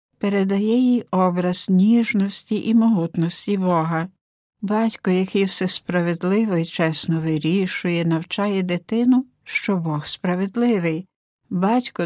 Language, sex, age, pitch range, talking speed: Ukrainian, female, 60-79, 175-215 Hz, 100 wpm